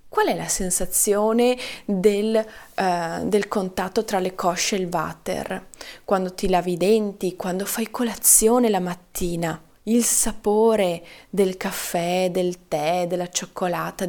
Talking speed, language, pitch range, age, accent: 130 wpm, Italian, 185-225 Hz, 20-39, native